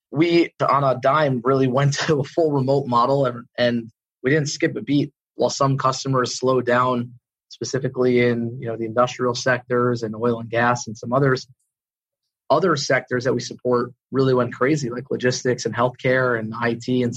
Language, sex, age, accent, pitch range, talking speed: English, male, 20-39, American, 120-140 Hz, 180 wpm